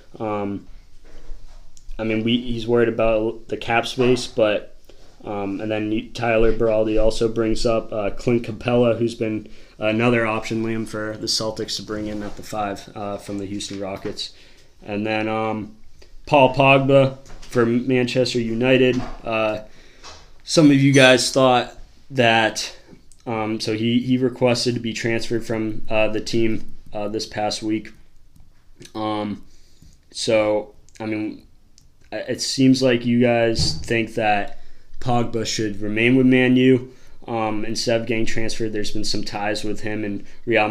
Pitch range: 105-120 Hz